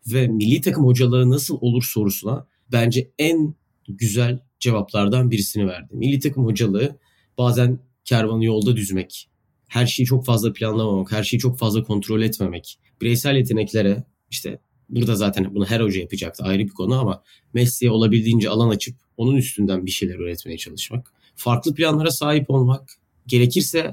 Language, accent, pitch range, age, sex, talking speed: Turkish, native, 95-125 Hz, 30-49, male, 150 wpm